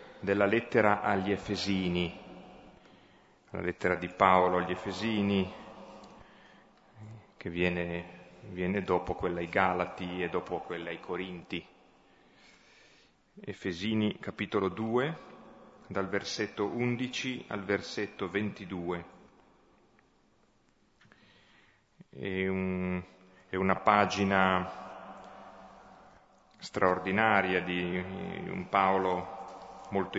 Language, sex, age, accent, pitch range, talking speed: Italian, male, 30-49, native, 90-105 Hz, 80 wpm